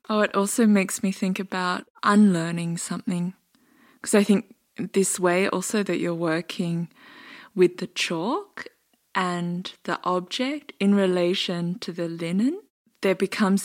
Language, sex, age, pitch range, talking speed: English, female, 20-39, 165-195 Hz, 135 wpm